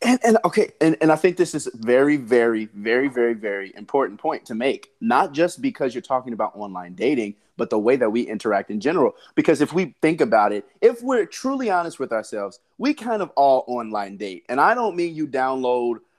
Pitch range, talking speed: 115-175 Hz, 215 wpm